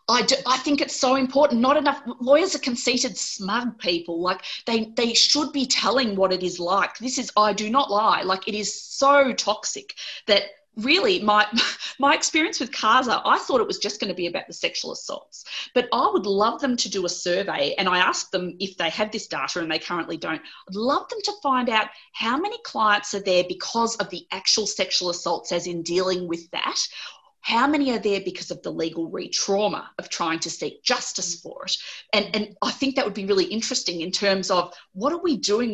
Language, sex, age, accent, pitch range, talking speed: English, female, 30-49, Australian, 185-260 Hz, 215 wpm